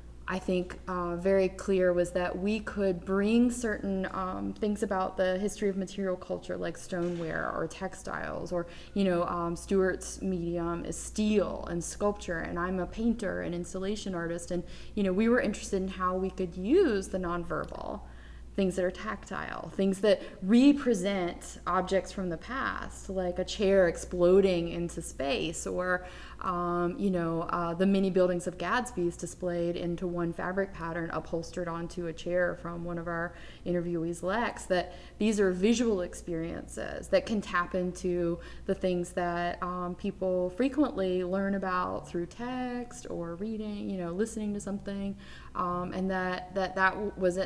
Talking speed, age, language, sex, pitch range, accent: 160 wpm, 20-39, English, female, 170-195 Hz, American